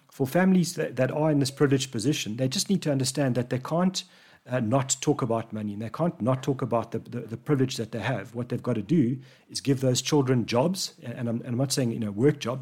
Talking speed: 260 wpm